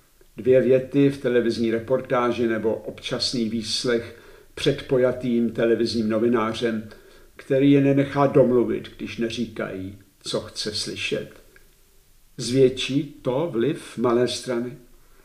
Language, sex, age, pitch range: Czech, male, 60-79, 110-125 Hz